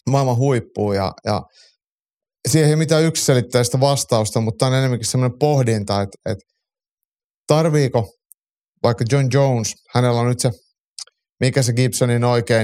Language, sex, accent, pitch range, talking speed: Finnish, male, native, 110-140 Hz, 140 wpm